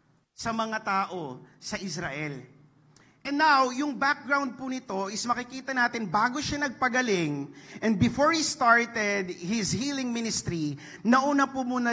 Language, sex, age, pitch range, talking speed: English, male, 40-59, 195-245 Hz, 130 wpm